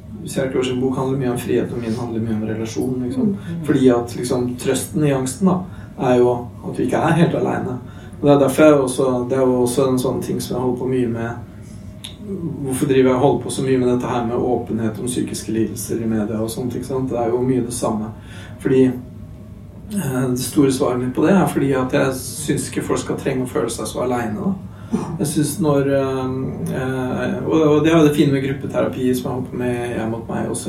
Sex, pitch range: male, 120-145 Hz